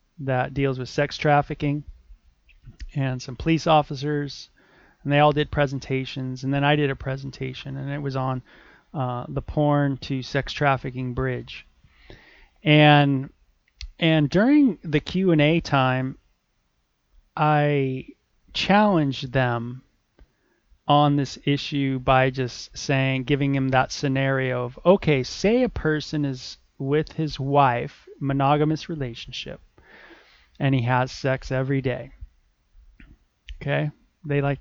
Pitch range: 130-150 Hz